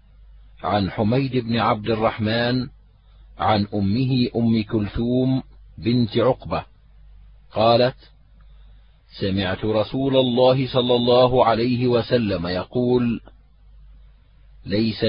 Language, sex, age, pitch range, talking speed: Arabic, male, 40-59, 110-130 Hz, 85 wpm